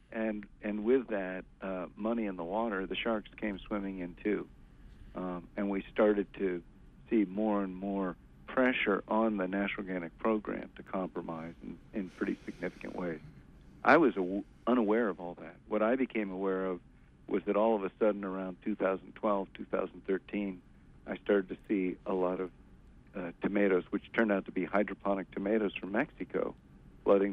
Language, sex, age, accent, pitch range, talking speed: English, male, 50-69, American, 90-105 Hz, 170 wpm